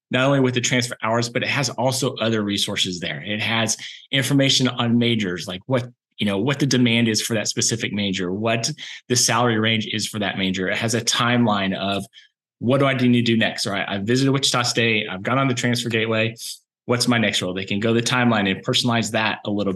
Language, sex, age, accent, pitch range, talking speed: English, male, 30-49, American, 110-135 Hz, 230 wpm